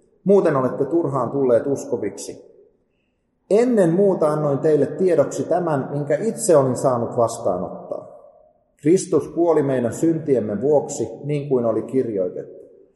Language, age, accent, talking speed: Finnish, 30-49, native, 115 wpm